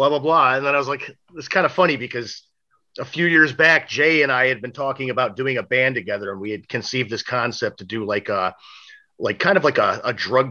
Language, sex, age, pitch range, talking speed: English, male, 40-59, 125-175 Hz, 255 wpm